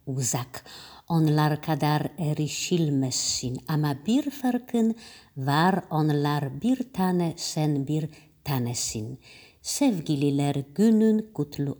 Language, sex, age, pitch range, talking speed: Polish, female, 50-69, 130-190 Hz, 85 wpm